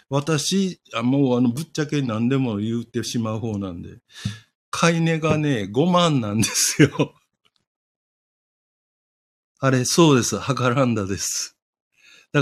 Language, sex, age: Japanese, male, 60-79